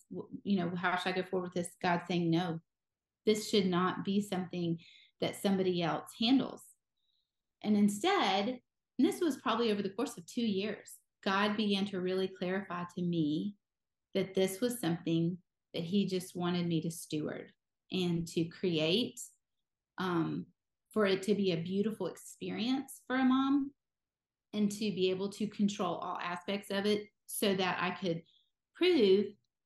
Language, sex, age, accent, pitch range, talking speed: English, female, 30-49, American, 180-215 Hz, 160 wpm